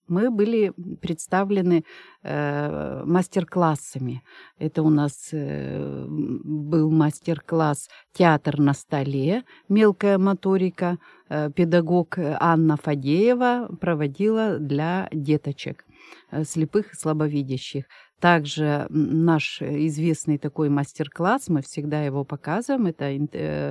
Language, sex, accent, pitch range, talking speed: Russian, female, native, 155-205 Hz, 85 wpm